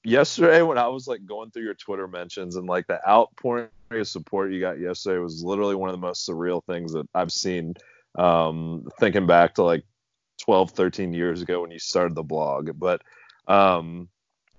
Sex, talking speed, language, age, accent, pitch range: male, 190 wpm, English, 30-49, American, 90-100 Hz